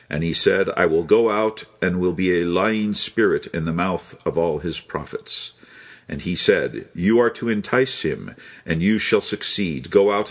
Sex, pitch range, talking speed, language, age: male, 85-115 Hz, 200 wpm, English, 50-69